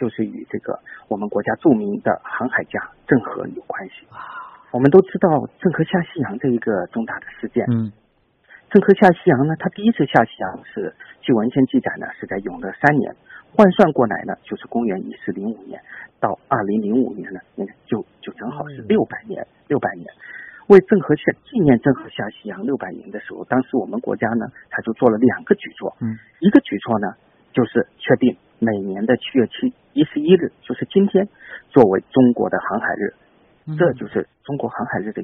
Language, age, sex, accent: Chinese, 50-69, male, native